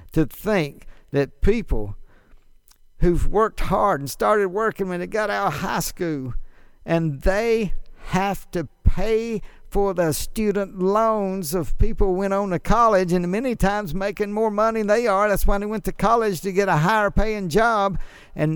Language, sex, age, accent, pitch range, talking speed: English, male, 60-79, American, 145-205 Hz, 180 wpm